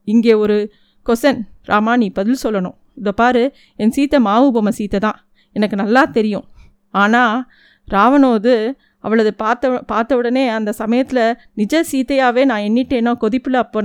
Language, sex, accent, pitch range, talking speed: Tamil, female, native, 220-265 Hz, 135 wpm